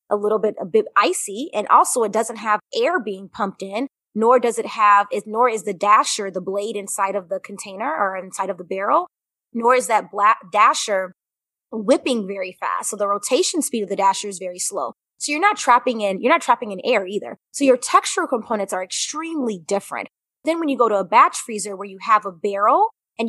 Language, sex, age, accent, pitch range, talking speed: English, female, 20-39, American, 200-250 Hz, 220 wpm